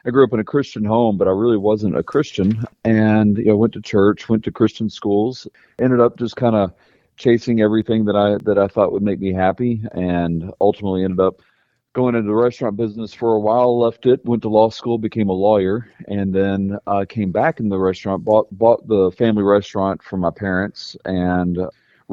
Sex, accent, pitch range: male, American, 100-120 Hz